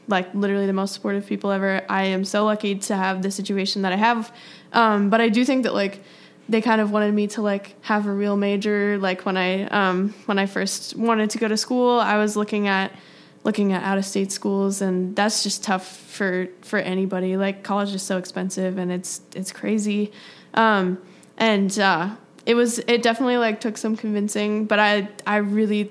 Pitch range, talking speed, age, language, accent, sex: 195-215 Hz, 205 wpm, 10-29, English, American, female